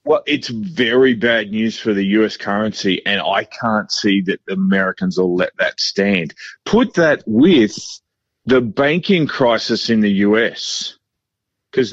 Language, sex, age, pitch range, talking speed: English, male, 40-59, 110-140 Hz, 150 wpm